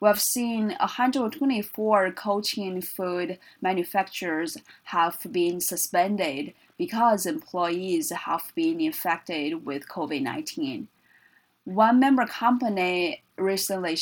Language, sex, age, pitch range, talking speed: English, female, 20-39, 170-215 Hz, 90 wpm